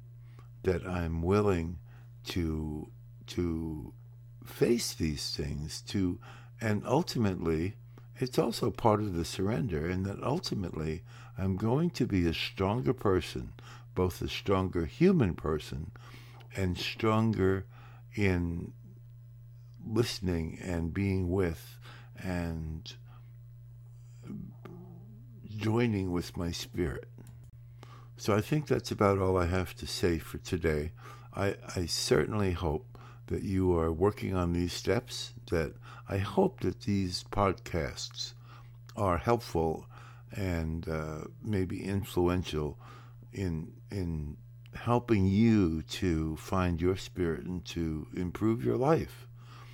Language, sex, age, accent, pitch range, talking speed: English, male, 60-79, American, 90-120 Hz, 110 wpm